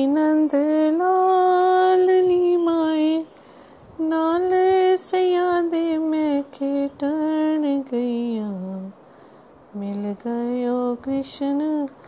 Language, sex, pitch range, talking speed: Hindi, female, 270-365 Hz, 60 wpm